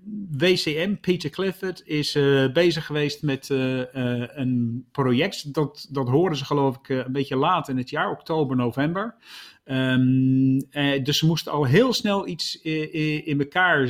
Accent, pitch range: Dutch, 130-170 Hz